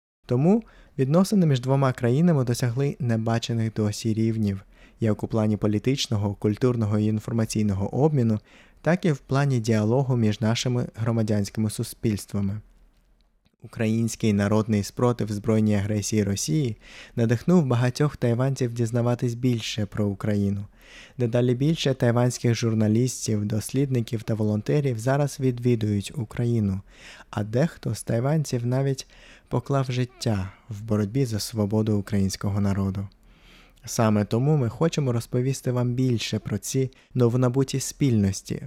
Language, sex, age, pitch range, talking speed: Ukrainian, male, 20-39, 110-130 Hz, 115 wpm